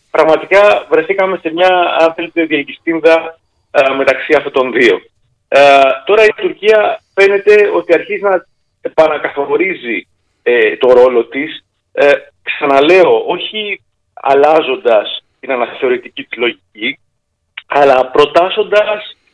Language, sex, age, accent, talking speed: Greek, male, 40-59, native, 100 wpm